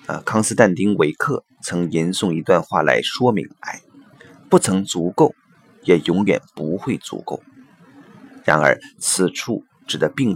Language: Chinese